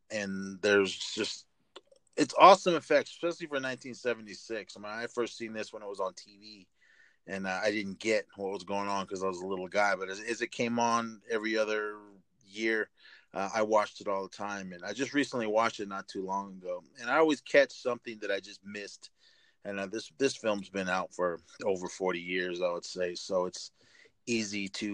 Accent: American